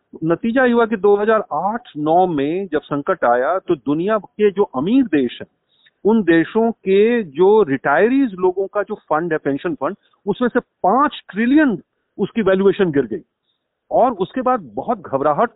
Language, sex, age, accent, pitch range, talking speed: Hindi, male, 40-59, native, 165-235 Hz, 160 wpm